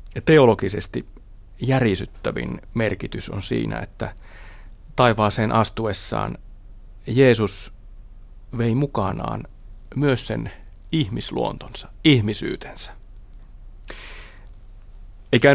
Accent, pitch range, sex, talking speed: native, 100-130 Hz, male, 60 wpm